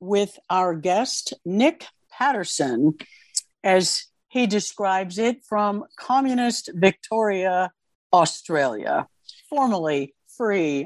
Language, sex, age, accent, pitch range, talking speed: English, female, 60-79, American, 160-220 Hz, 85 wpm